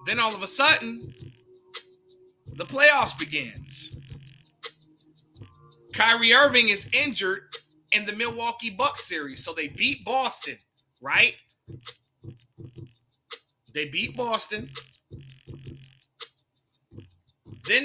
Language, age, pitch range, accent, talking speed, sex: English, 30-49, 145-210 Hz, American, 85 wpm, male